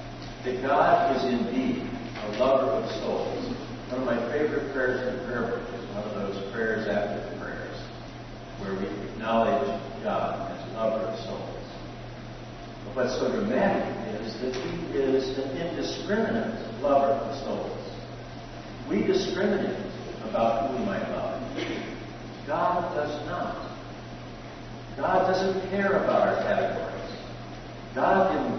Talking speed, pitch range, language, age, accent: 135 wpm, 115-130 Hz, English, 60-79, American